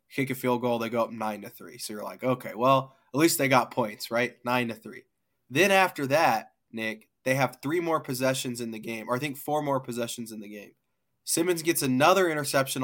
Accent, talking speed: American, 225 wpm